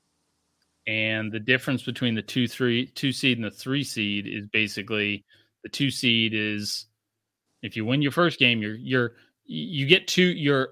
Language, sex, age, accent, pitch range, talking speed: English, male, 30-49, American, 105-125 Hz, 175 wpm